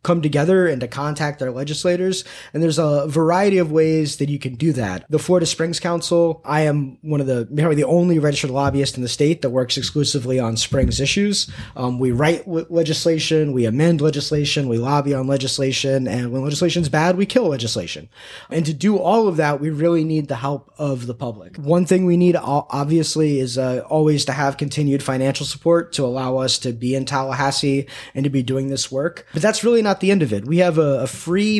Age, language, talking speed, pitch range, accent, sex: 20-39, English, 215 wpm, 130-160 Hz, American, male